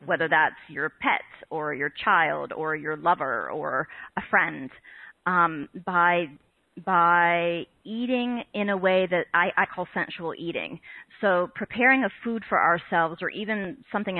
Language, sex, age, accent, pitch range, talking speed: English, female, 30-49, American, 160-195 Hz, 150 wpm